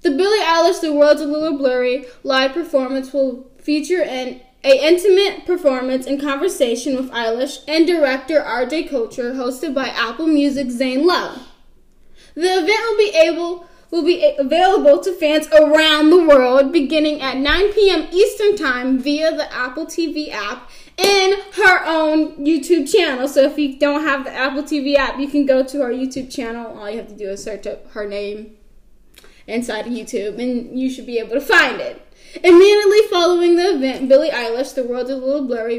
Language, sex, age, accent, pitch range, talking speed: English, female, 10-29, American, 250-320 Hz, 180 wpm